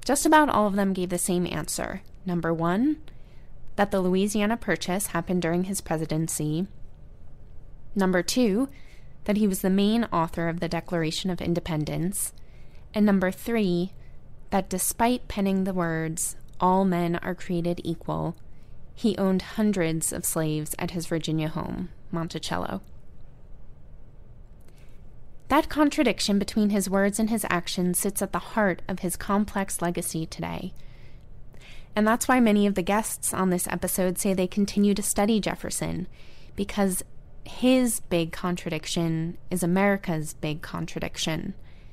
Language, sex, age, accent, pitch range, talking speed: English, female, 20-39, American, 170-205 Hz, 135 wpm